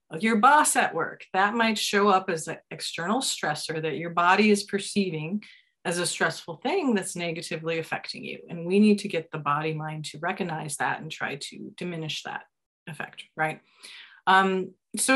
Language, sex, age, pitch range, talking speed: English, female, 30-49, 165-215 Hz, 175 wpm